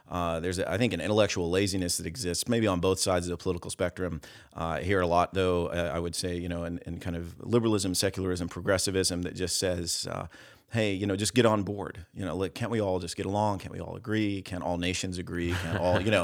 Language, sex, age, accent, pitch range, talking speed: English, male, 40-59, American, 90-105 Hz, 260 wpm